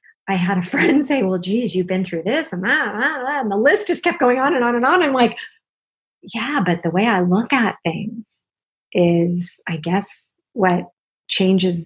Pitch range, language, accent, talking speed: 175-205 Hz, English, American, 205 wpm